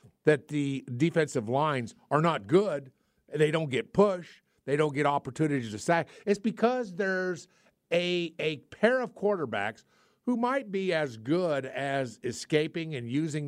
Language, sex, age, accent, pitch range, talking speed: English, male, 50-69, American, 135-185 Hz, 150 wpm